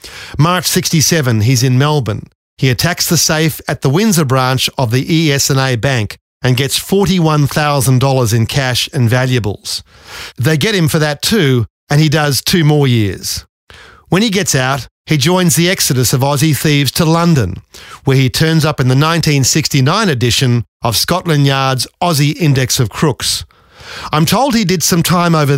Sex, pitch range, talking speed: male, 120-160 Hz, 165 wpm